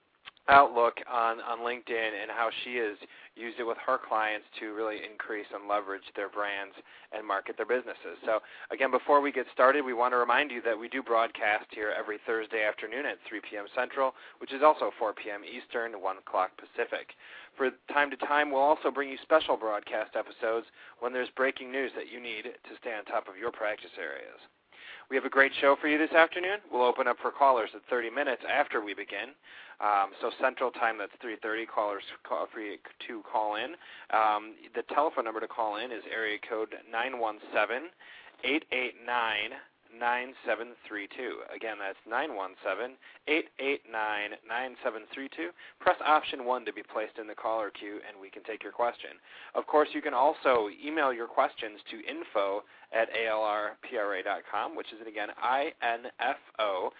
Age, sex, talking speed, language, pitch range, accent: 30-49, male, 170 wpm, English, 110-135 Hz, American